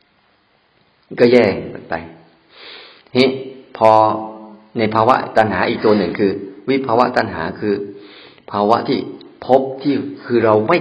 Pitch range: 100-115 Hz